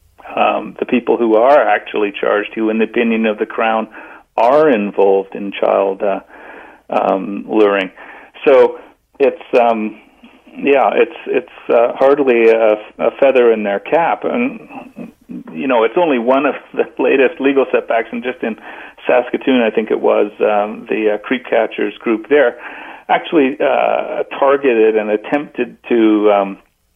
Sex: male